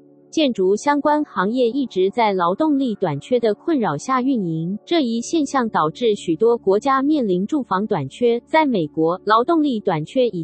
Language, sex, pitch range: Chinese, female, 185-275 Hz